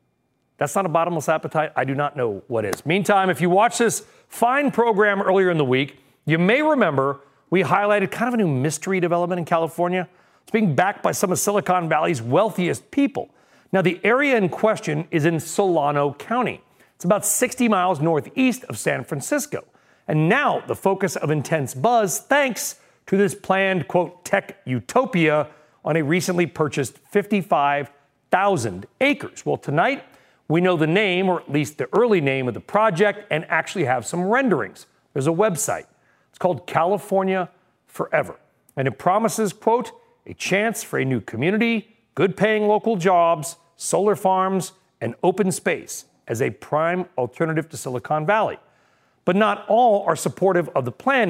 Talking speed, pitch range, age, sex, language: 165 wpm, 155-210 Hz, 40-59, male, English